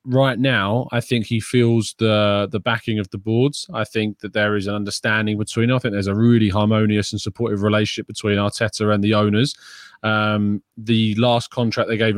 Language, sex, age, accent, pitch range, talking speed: English, male, 20-39, British, 105-120 Hz, 195 wpm